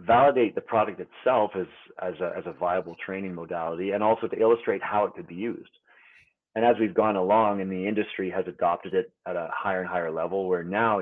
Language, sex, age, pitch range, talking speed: English, male, 30-49, 95-115 Hz, 220 wpm